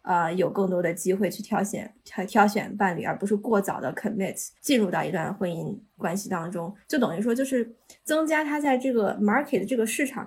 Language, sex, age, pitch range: Chinese, female, 20-39, 185-225 Hz